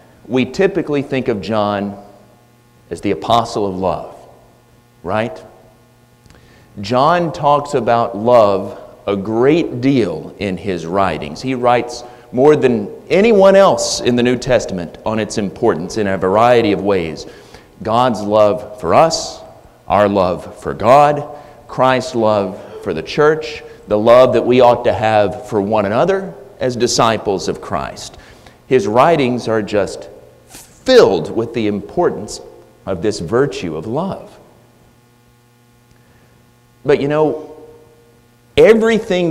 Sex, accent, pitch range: male, American, 115-155 Hz